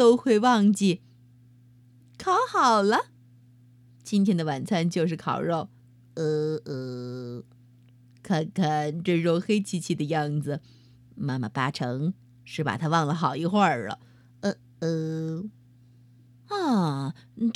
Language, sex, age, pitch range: Chinese, female, 30-49, 140-225 Hz